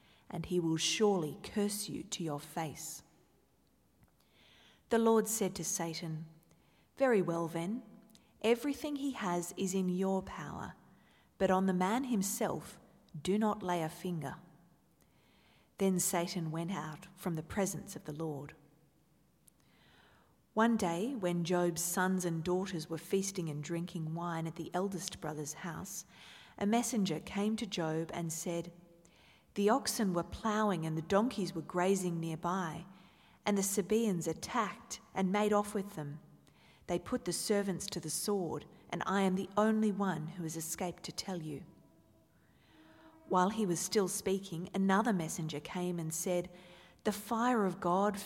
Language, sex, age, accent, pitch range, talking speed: English, female, 40-59, Australian, 170-205 Hz, 150 wpm